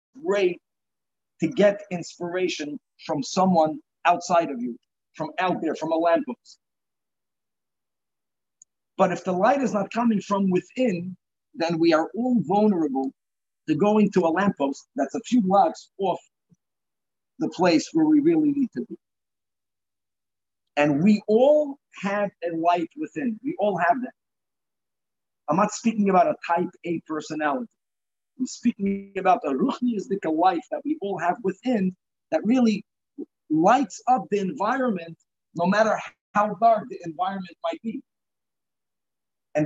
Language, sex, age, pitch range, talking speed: English, male, 50-69, 170-245 Hz, 140 wpm